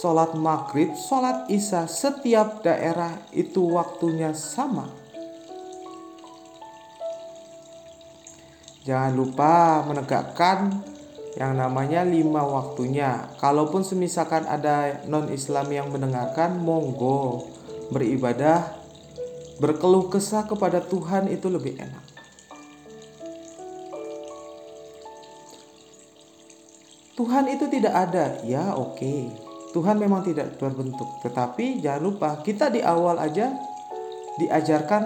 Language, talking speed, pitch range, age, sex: Indonesian, 85 wpm, 140-210 Hz, 40-59, male